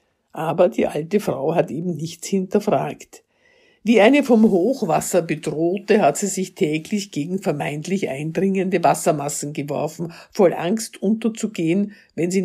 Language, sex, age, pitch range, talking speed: German, female, 60-79, 160-220 Hz, 130 wpm